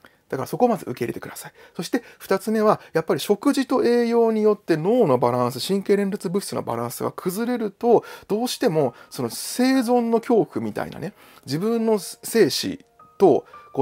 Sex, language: male, Japanese